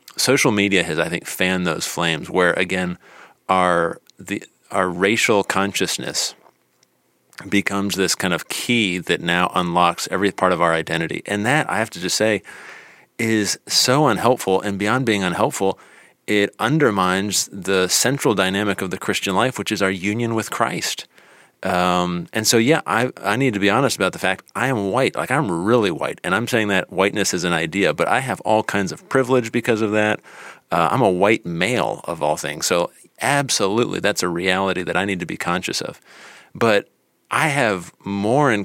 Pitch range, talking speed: 95-110 Hz, 185 wpm